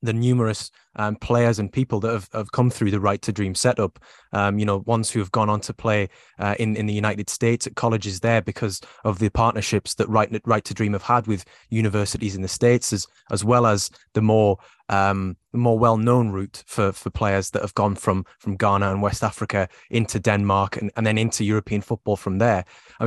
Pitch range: 100-115 Hz